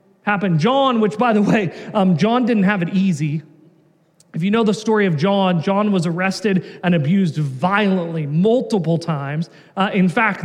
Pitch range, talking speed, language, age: 180-250 Hz, 170 wpm, English, 30-49